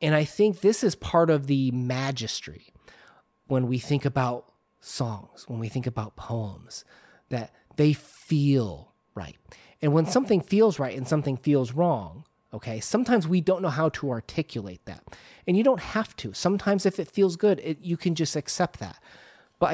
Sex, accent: male, American